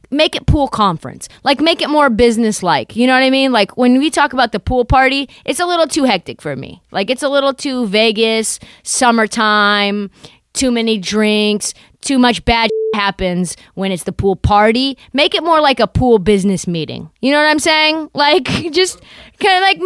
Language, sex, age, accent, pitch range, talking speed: English, female, 20-39, American, 170-260 Hz, 200 wpm